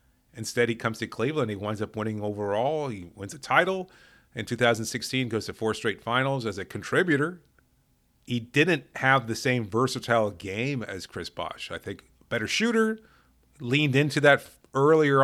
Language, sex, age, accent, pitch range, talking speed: English, male, 40-59, American, 100-125 Hz, 165 wpm